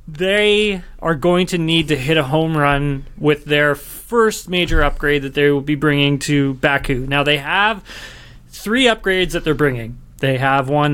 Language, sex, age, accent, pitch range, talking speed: English, male, 30-49, American, 140-175 Hz, 180 wpm